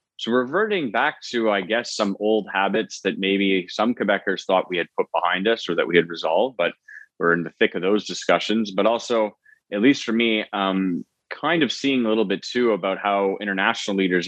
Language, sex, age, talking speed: English, male, 20-39, 210 wpm